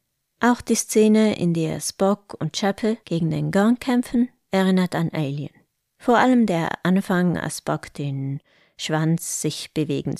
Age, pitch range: 20-39, 155-210 Hz